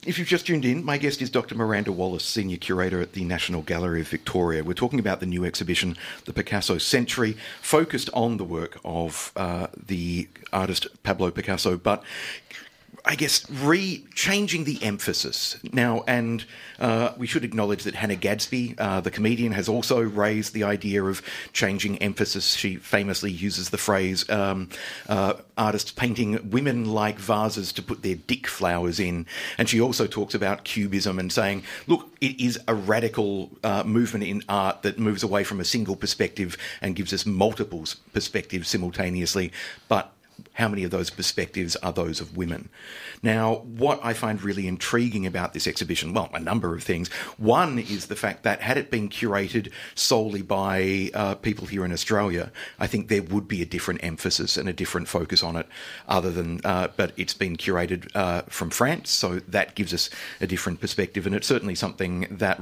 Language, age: English, 50-69